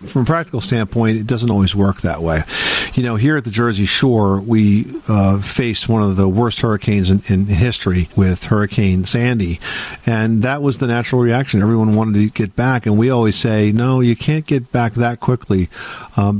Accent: American